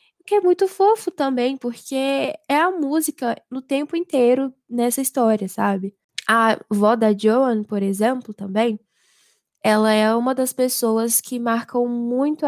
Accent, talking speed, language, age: Brazilian, 145 wpm, Portuguese, 10-29